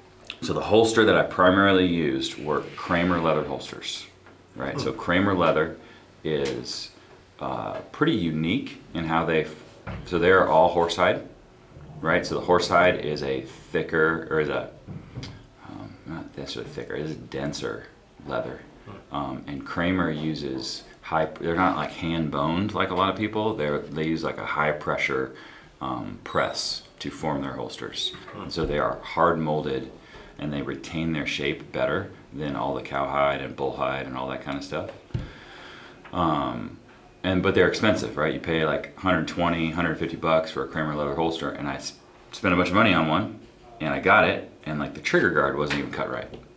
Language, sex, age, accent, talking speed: English, male, 30-49, American, 175 wpm